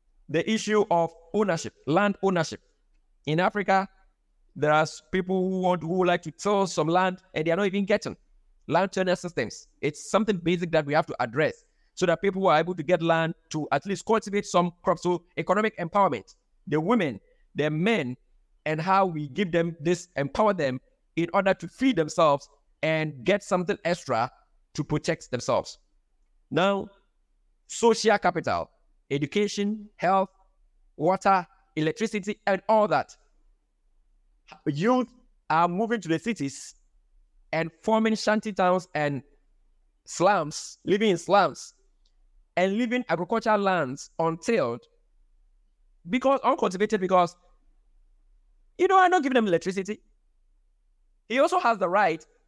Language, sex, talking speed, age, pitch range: English, male, 140 wpm, 50-69, 165-210 Hz